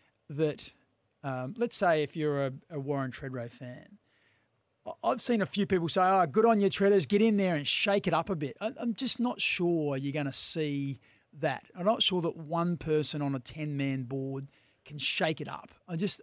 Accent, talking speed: Australian, 210 wpm